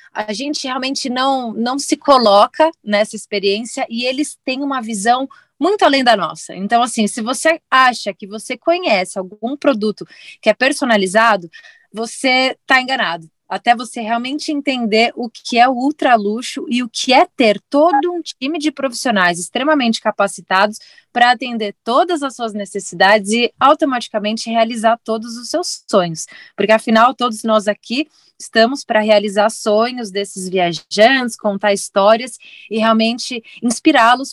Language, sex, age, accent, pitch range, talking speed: Portuguese, female, 20-39, Brazilian, 210-270 Hz, 145 wpm